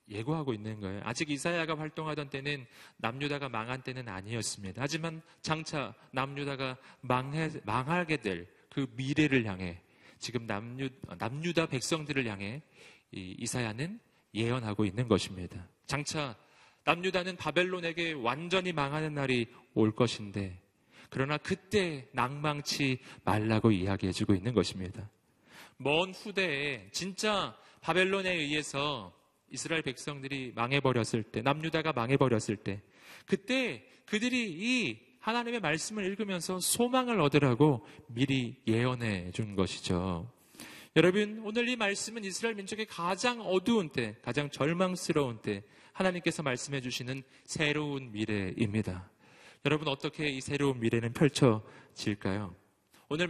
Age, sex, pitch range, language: 40-59, male, 115-165 Hz, Korean